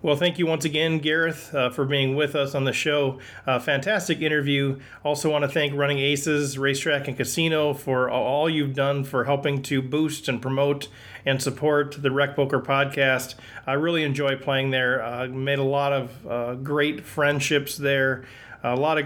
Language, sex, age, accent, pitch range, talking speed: English, male, 40-59, American, 135-150 Hz, 185 wpm